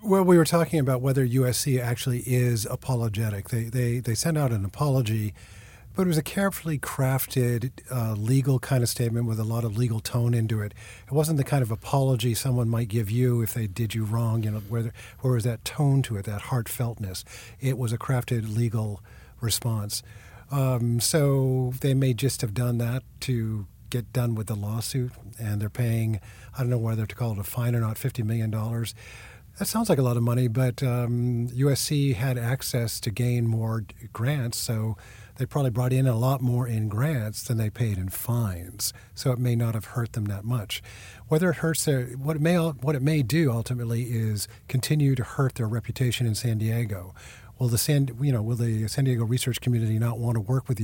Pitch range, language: 110-130 Hz, English